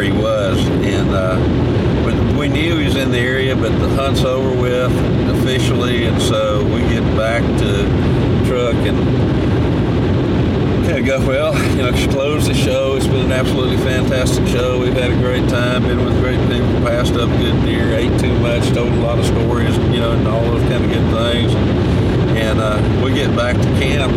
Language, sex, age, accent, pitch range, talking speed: English, male, 50-69, American, 110-125 Hz, 190 wpm